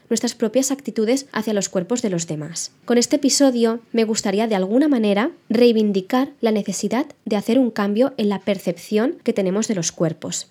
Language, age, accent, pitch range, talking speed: Spanish, 20-39, Spanish, 195-255 Hz, 185 wpm